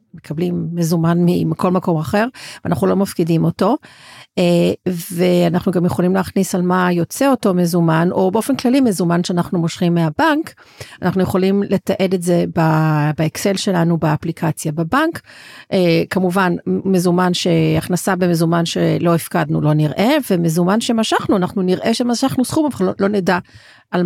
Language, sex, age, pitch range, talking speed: Hebrew, female, 40-59, 170-205 Hz, 130 wpm